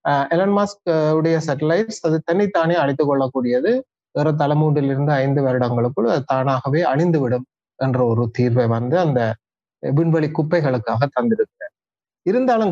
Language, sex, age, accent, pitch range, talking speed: Tamil, male, 30-49, native, 125-160 Hz, 90 wpm